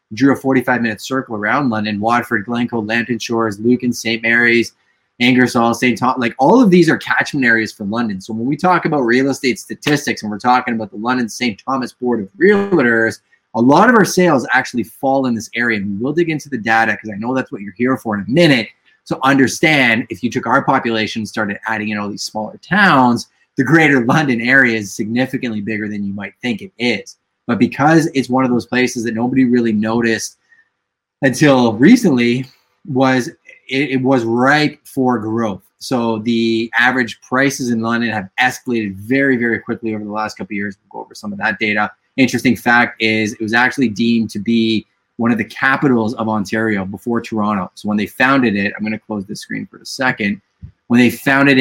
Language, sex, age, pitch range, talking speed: English, male, 20-39, 110-130 Hz, 205 wpm